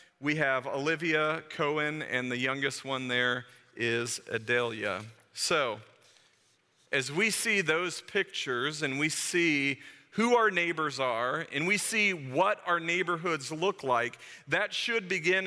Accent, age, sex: American, 40-59, male